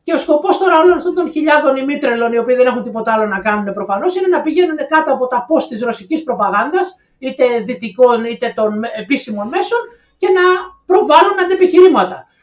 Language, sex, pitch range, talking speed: Greek, male, 235-315 Hz, 185 wpm